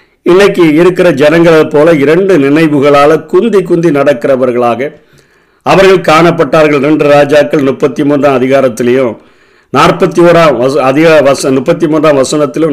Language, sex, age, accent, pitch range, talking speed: Tamil, male, 50-69, native, 130-160 Hz, 95 wpm